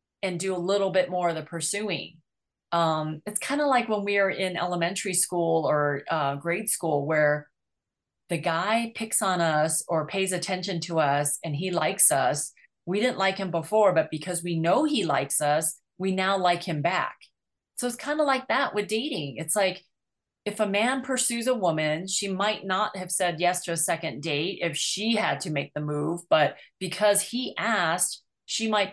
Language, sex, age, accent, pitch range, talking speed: English, female, 30-49, American, 170-225 Hz, 195 wpm